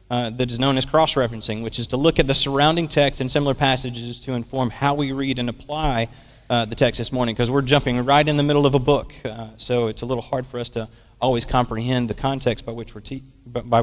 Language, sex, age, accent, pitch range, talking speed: English, male, 30-49, American, 115-140 Hz, 245 wpm